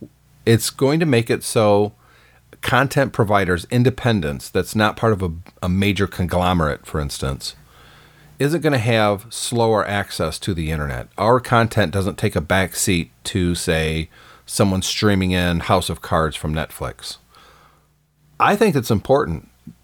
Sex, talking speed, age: male, 150 wpm, 40-59